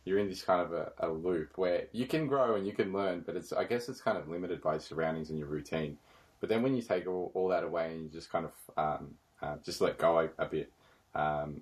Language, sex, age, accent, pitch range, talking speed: English, male, 20-39, Australian, 75-85 Hz, 270 wpm